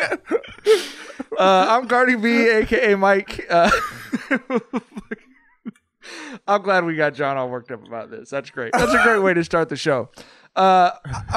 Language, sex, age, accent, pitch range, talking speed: English, male, 20-39, American, 135-190 Hz, 150 wpm